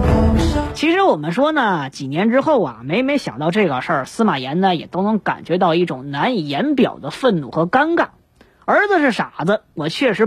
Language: Chinese